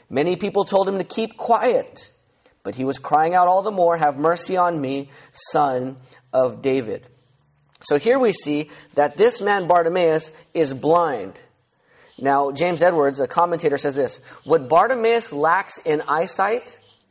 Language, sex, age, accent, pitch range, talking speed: English, male, 30-49, American, 150-220 Hz, 155 wpm